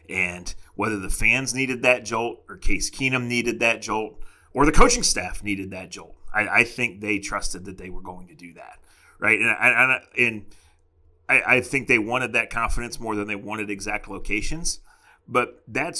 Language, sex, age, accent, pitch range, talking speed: English, male, 30-49, American, 100-115 Hz, 190 wpm